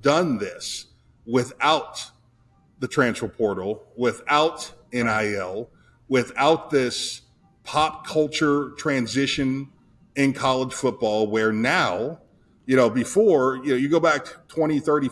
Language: English